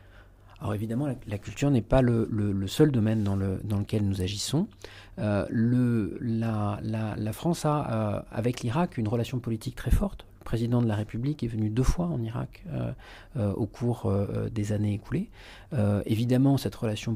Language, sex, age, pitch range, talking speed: Arabic, male, 40-59, 105-125 Hz, 190 wpm